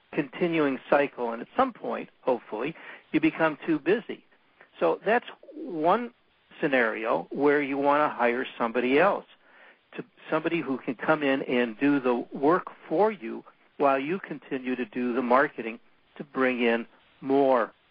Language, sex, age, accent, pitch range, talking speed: English, male, 60-79, American, 130-160 Hz, 150 wpm